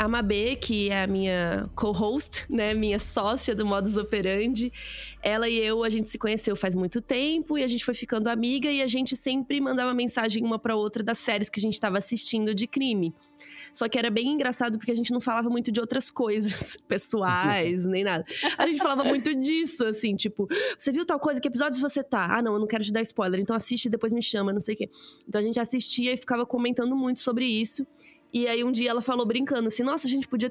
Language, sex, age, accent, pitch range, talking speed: Portuguese, female, 20-39, Brazilian, 200-250 Hz, 235 wpm